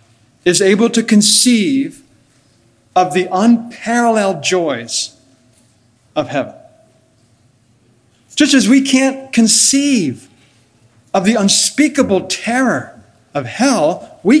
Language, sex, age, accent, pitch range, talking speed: English, male, 50-69, American, 120-200 Hz, 90 wpm